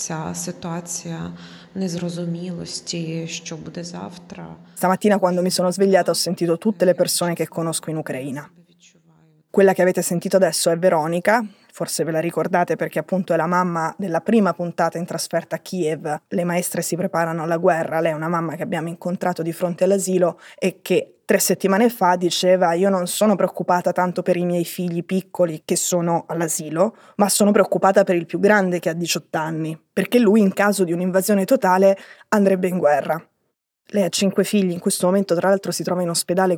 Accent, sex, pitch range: native, female, 170-195 Hz